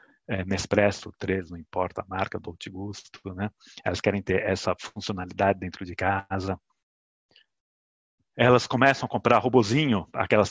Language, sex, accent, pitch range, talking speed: Portuguese, male, Brazilian, 95-120 Hz, 145 wpm